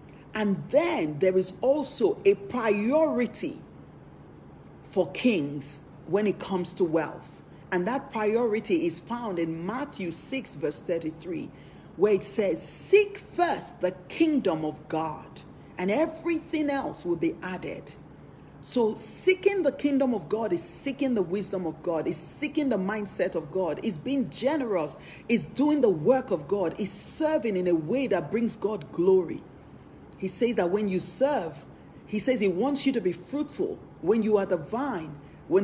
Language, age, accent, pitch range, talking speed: English, 40-59, Nigerian, 175-270 Hz, 160 wpm